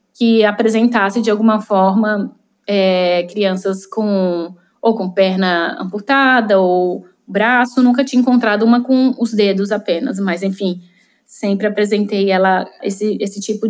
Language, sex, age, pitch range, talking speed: Portuguese, female, 20-39, 200-255 Hz, 125 wpm